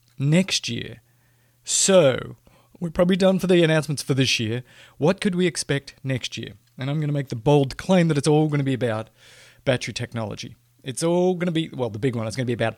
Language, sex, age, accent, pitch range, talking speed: English, male, 30-49, Australian, 120-150 Hz, 230 wpm